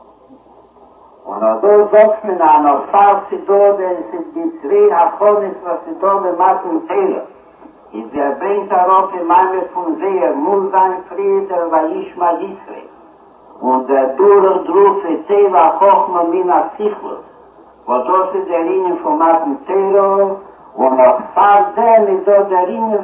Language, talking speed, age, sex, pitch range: Hebrew, 85 wpm, 60-79, male, 170-210 Hz